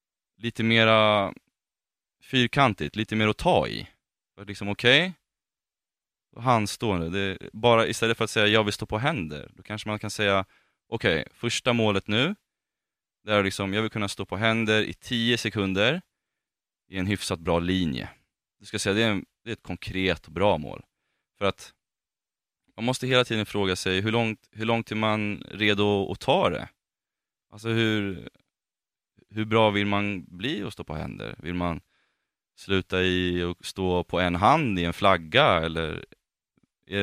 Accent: native